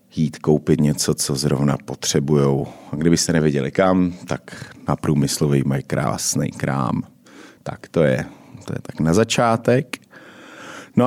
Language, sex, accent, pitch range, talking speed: Czech, male, native, 80-95 Hz, 135 wpm